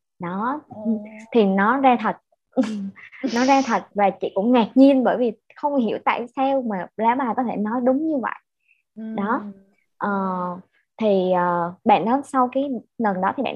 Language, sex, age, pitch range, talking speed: Vietnamese, male, 20-39, 195-270 Hz, 175 wpm